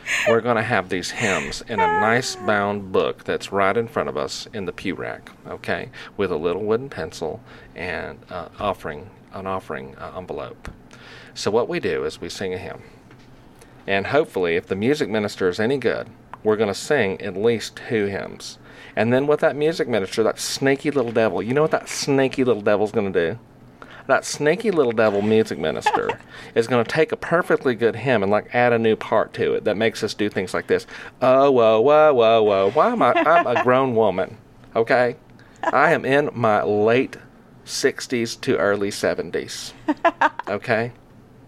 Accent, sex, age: American, male, 40-59